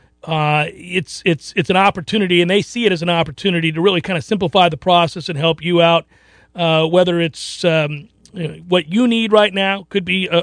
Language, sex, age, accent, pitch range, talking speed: English, male, 40-59, American, 170-210 Hz, 220 wpm